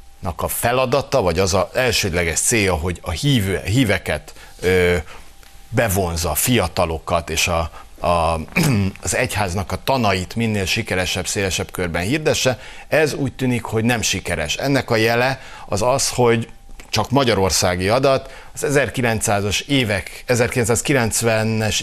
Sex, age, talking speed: male, 60-79, 130 wpm